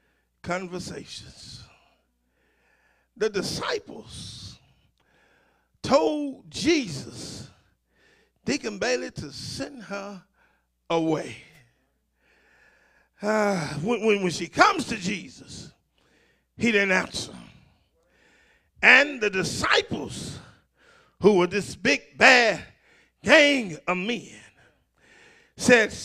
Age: 50-69